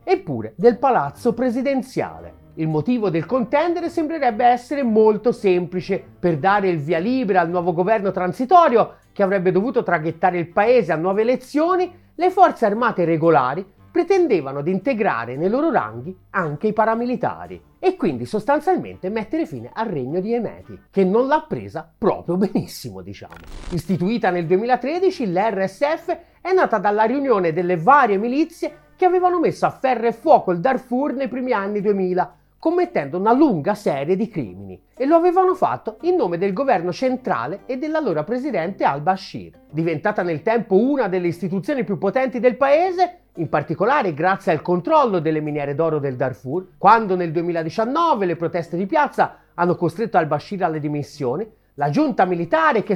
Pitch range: 180-270 Hz